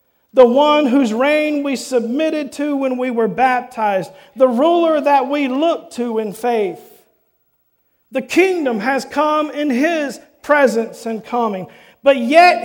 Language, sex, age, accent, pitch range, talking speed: English, male, 50-69, American, 240-295 Hz, 140 wpm